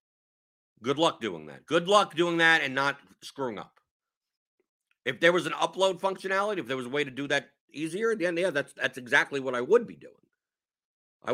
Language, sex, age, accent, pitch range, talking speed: English, male, 50-69, American, 125-170 Hz, 200 wpm